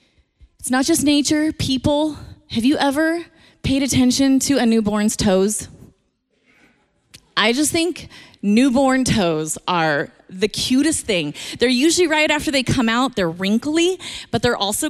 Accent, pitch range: American, 195-270 Hz